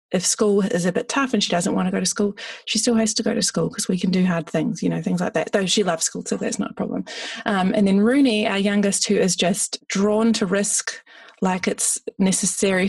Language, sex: English, female